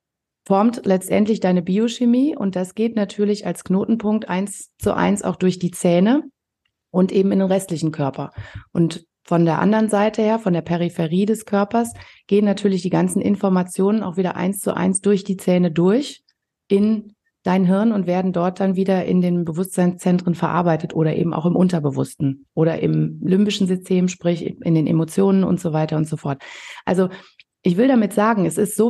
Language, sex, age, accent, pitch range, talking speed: German, female, 30-49, German, 175-215 Hz, 180 wpm